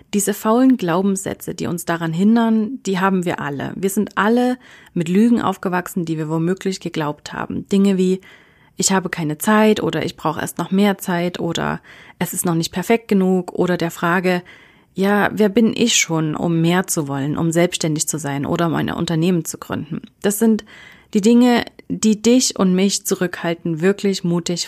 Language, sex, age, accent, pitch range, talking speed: German, female, 30-49, German, 170-210 Hz, 180 wpm